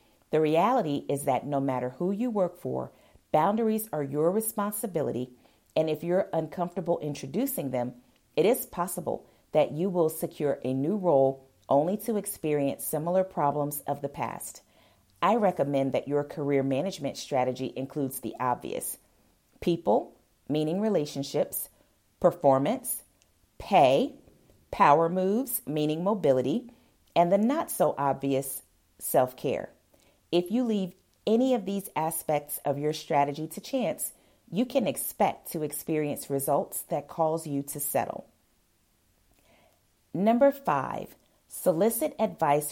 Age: 40-59